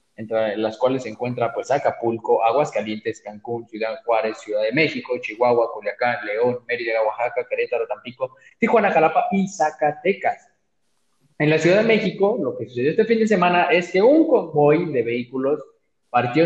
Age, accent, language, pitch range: 20-39, Mexican, Spanish, 120-160 Hz